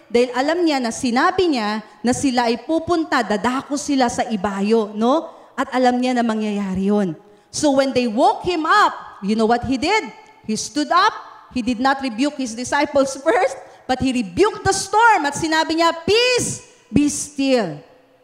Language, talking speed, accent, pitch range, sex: English, 170 wpm, Filipino, 205-305 Hz, female